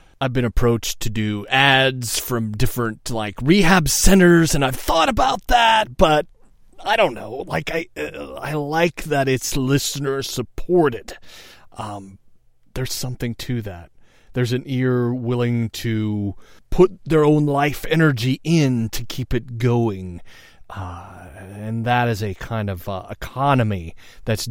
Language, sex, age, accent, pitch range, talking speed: English, male, 30-49, American, 100-130 Hz, 140 wpm